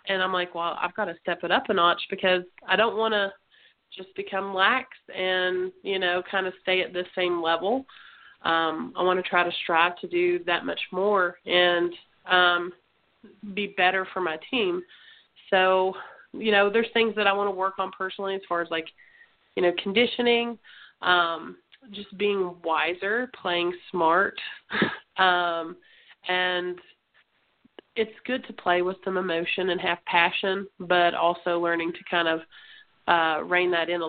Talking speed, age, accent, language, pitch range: 170 wpm, 30-49, American, English, 175-200 Hz